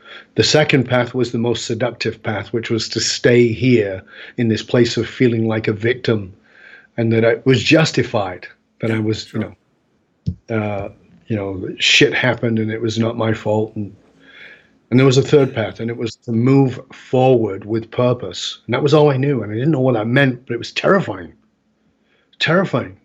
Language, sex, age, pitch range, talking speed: English, male, 30-49, 115-140 Hz, 195 wpm